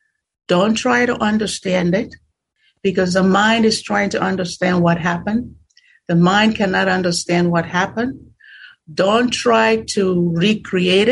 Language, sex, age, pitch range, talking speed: English, female, 60-79, 170-225 Hz, 130 wpm